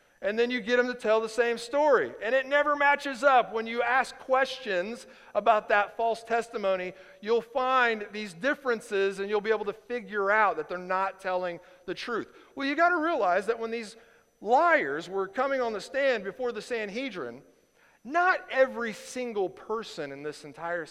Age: 40-59